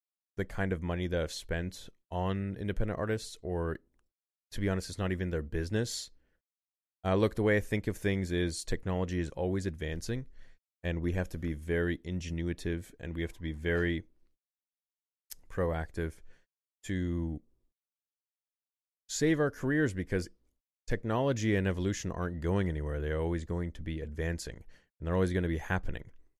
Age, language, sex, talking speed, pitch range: 20-39, English, male, 160 wpm, 80-100 Hz